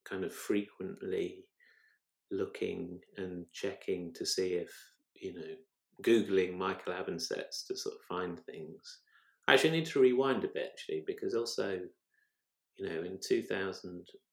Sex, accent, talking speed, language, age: male, British, 140 wpm, English, 30-49